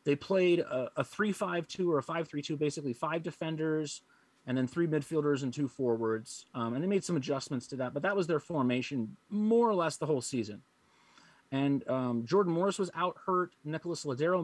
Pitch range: 130-165 Hz